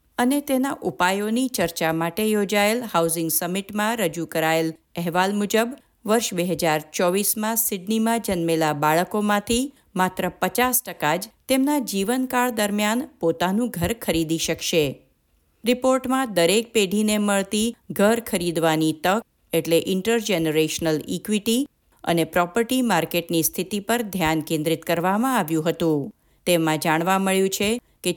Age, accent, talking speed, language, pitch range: 50-69, native, 110 wpm, Gujarati, 170-230 Hz